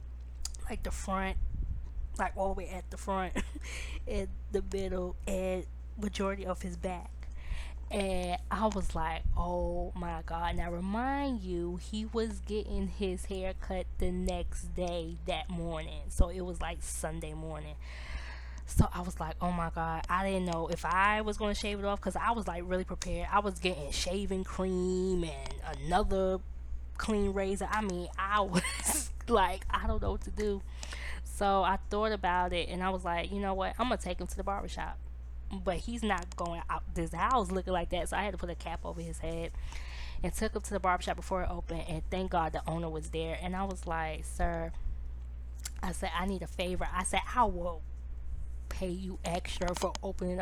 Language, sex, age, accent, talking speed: English, female, 10-29, American, 195 wpm